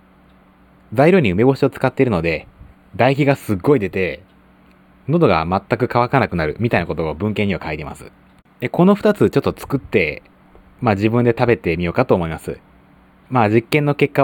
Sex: male